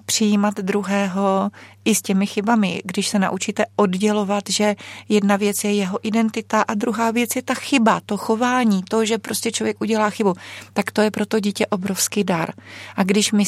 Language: Czech